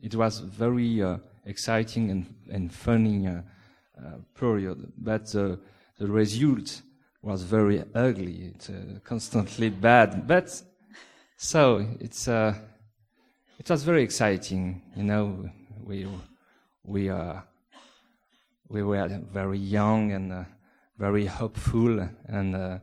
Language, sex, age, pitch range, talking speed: English, male, 30-49, 100-120 Hz, 120 wpm